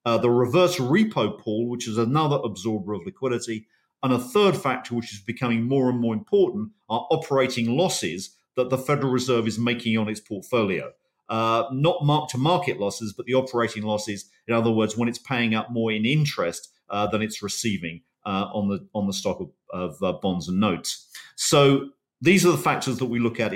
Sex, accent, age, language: male, British, 50-69, English